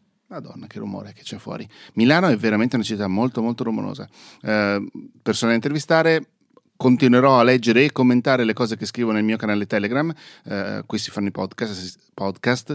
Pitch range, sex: 105-140 Hz, male